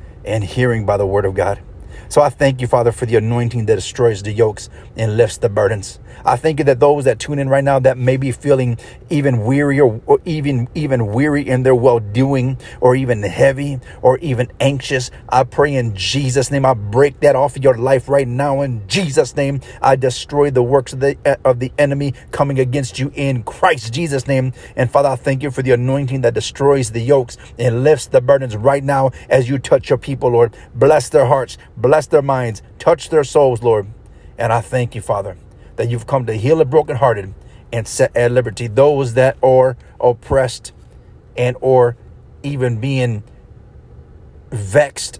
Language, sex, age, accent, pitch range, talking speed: English, male, 40-59, American, 115-140 Hz, 190 wpm